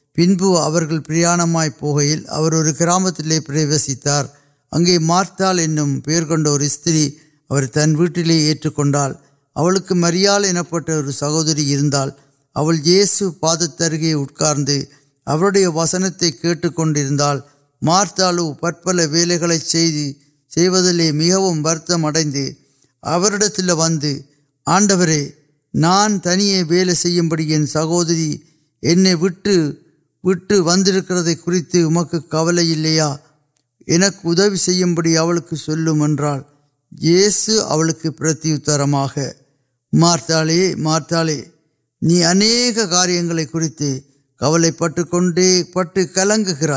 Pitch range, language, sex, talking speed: 150-175 Hz, Urdu, male, 55 wpm